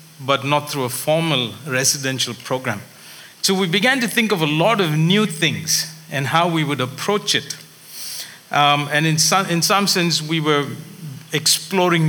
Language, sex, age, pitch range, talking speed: English, male, 50-69, 135-170 Hz, 165 wpm